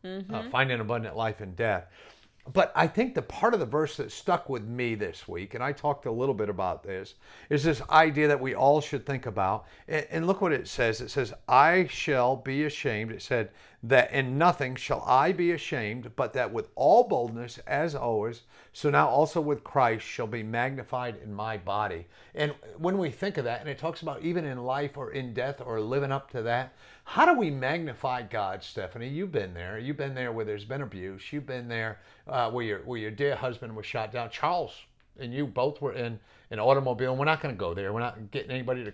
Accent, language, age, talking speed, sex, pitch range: American, English, 50-69, 220 wpm, male, 115-145 Hz